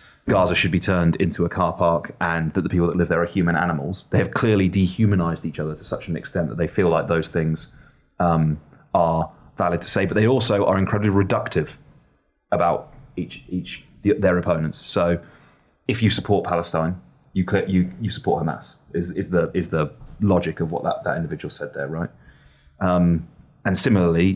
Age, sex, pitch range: 30-49, male, 85-100 Hz